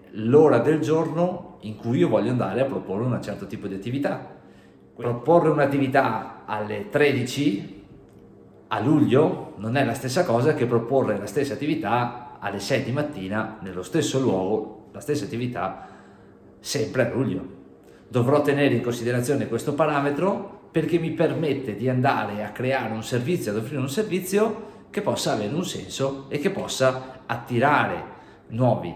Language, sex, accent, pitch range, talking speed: Italian, male, native, 105-145 Hz, 150 wpm